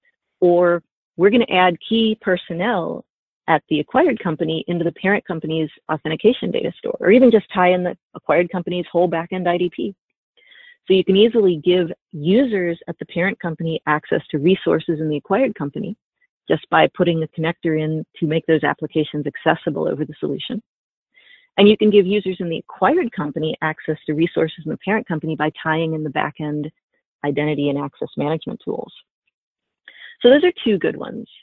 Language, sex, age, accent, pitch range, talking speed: English, female, 30-49, American, 160-195 Hz, 175 wpm